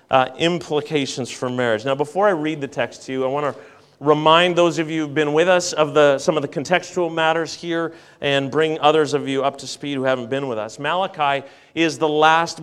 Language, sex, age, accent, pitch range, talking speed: English, male, 40-59, American, 145-180 Hz, 225 wpm